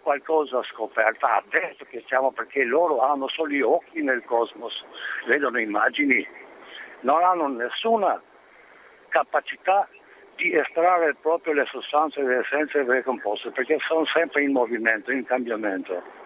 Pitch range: 135-210 Hz